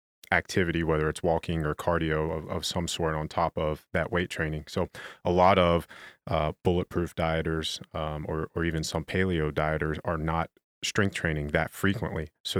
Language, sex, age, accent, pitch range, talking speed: English, male, 30-49, American, 75-90 Hz, 175 wpm